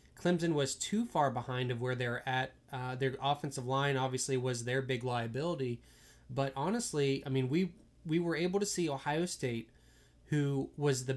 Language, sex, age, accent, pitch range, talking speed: English, male, 20-39, American, 130-150 Hz, 175 wpm